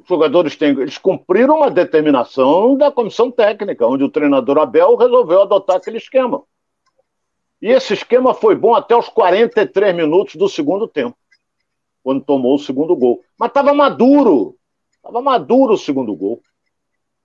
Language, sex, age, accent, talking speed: Portuguese, male, 60-79, Brazilian, 155 wpm